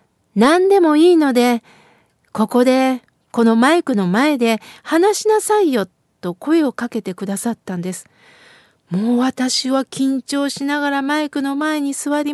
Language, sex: Japanese, female